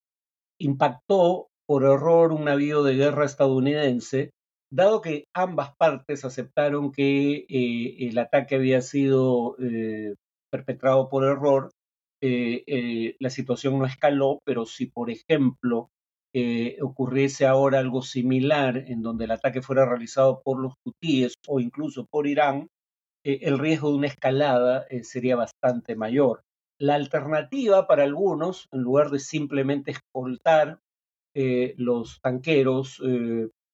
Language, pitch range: Spanish, 125-145 Hz